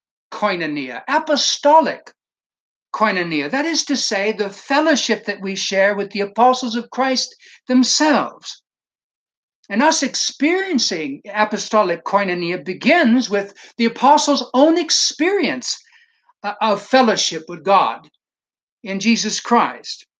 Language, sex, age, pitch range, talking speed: English, male, 60-79, 210-300 Hz, 105 wpm